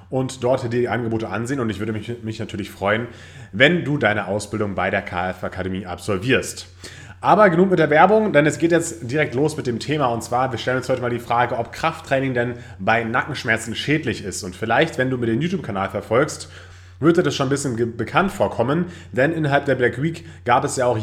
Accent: German